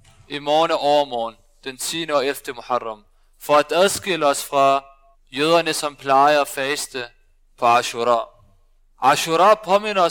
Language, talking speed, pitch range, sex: Danish, 135 wpm, 125-185 Hz, male